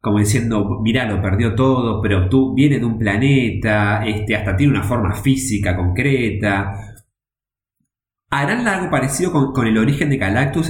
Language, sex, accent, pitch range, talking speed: Spanish, male, Argentinian, 105-140 Hz, 150 wpm